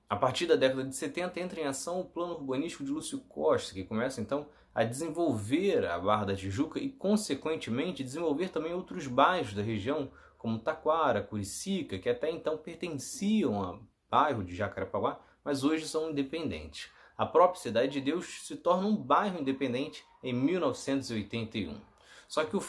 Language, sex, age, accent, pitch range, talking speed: Portuguese, male, 20-39, Brazilian, 110-160 Hz, 165 wpm